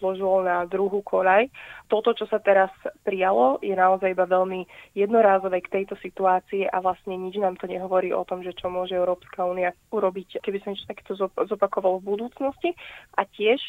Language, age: Slovak, 20-39